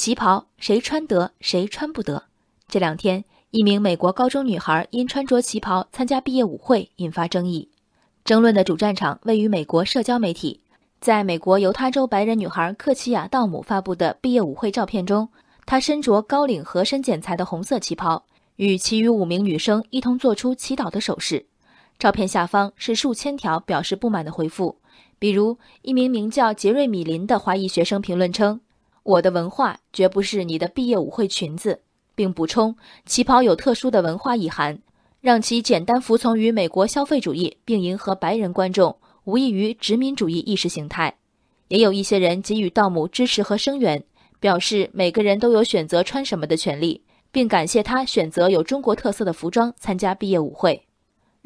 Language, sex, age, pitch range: Chinese, female, 20-39, 180-235 Hz